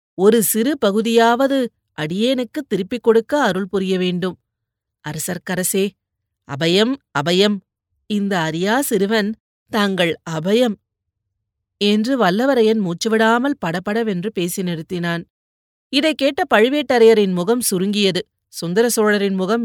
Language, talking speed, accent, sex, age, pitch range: Tamil, 90 wpm, native, female, 30-49, 175-230 Hz